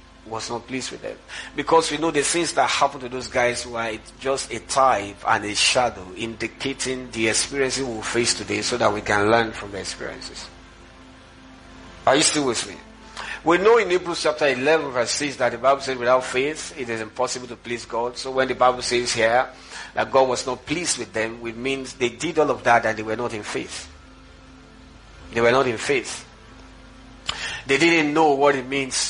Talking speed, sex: 205 wpm, male